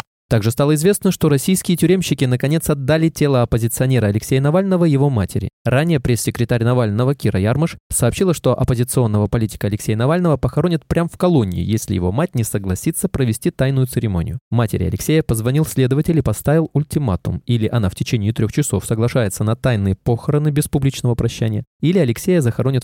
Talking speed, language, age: 160 wpm, Russian, 20-39